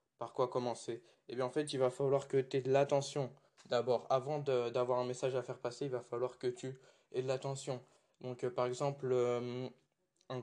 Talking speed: 215 wpm